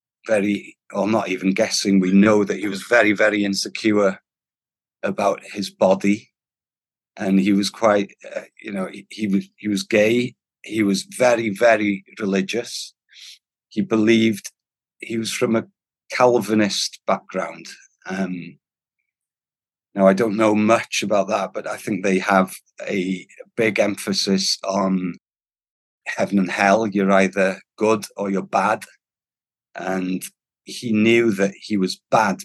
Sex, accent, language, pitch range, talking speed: male, British, English, 95-115 Hz, 135 wpm